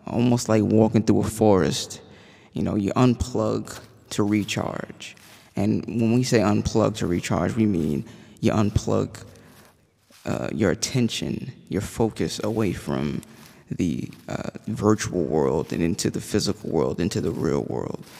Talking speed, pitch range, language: 140 wpm, 95-115 Hz, English